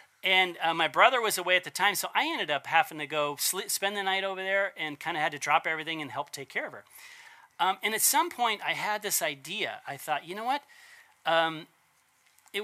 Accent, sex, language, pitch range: American, male, English, 155-240 Hz